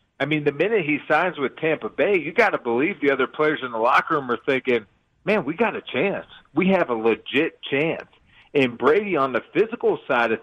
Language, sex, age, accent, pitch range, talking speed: English, male, 40-59, American, 120-145 Hz, 225 wpm